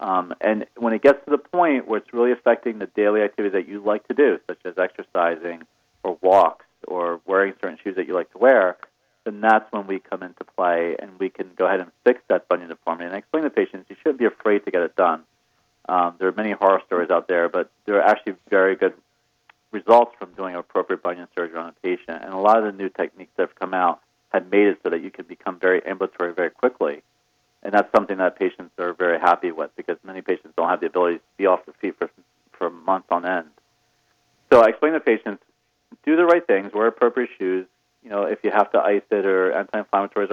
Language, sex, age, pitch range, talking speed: English, male, 40-59, 90-110 Hz, 235 wpm